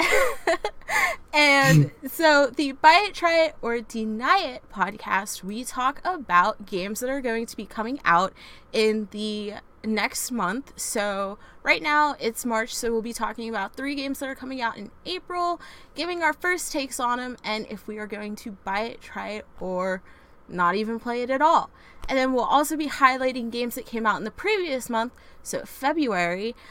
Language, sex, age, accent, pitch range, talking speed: English, female, 20-39, American, 215-275 Hz, 185 wpm